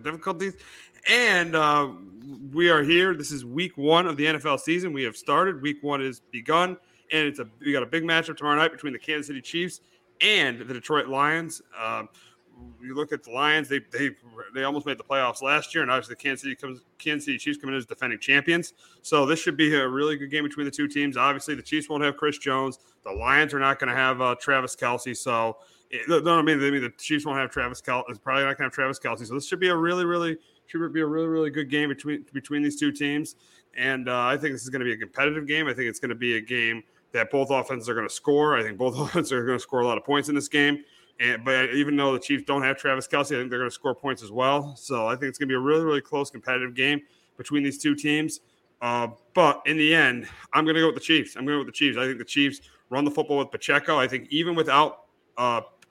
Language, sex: English, male